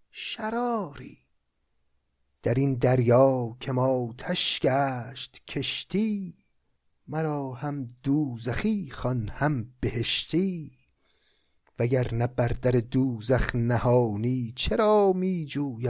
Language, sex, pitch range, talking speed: Persian, male, 125-150 Hz, 85 wpm